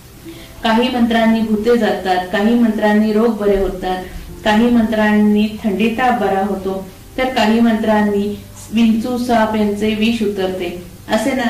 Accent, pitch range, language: native, 200-235 Hz, Marathi